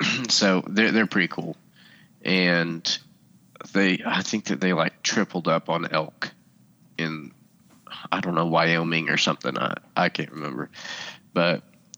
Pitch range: 85-95 Hz